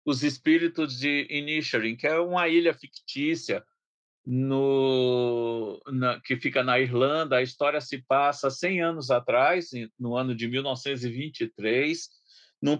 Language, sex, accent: Portuguese, male, Brazilian